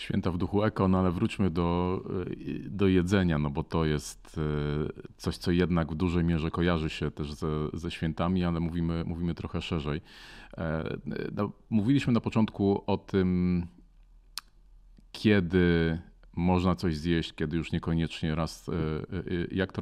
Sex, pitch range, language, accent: male, 85-105 Hz, Polish, native